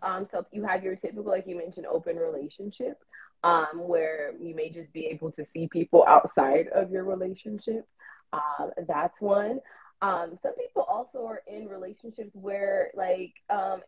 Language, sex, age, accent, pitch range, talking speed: English, female, 20-39, American, 170-240 Hz, 170 wpm